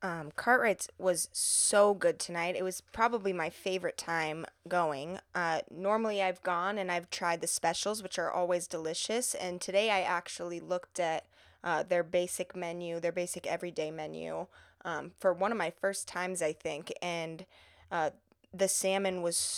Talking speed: 165 wpm